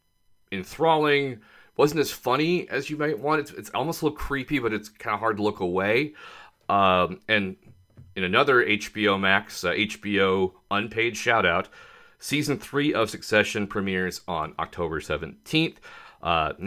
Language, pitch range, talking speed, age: English, 95-120 Hz, 150 wpm, 30-49